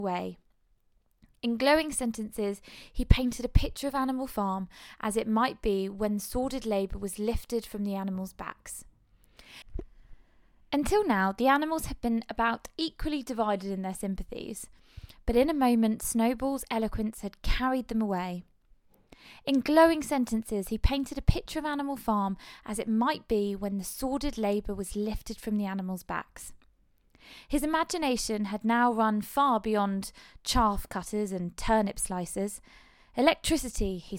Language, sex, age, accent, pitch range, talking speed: English, female, 20-39, British, 205-270 Hz, 145 wpm